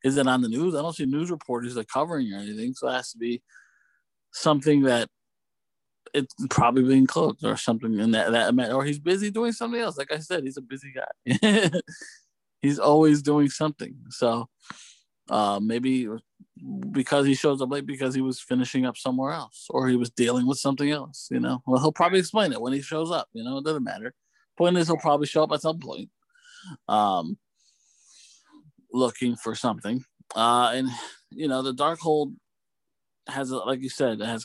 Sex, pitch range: male, 120-155 Hz